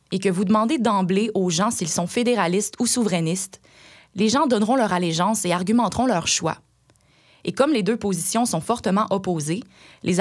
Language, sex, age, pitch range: French, female, 20-39, 175-225 Hz